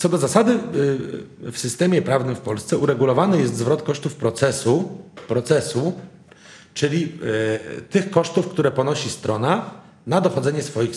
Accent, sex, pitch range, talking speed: native, male, 115-145 Hz, 125 wpm